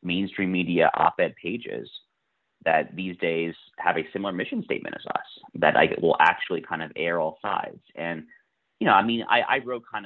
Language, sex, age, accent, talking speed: English, male, 30-49, American, 190 wpm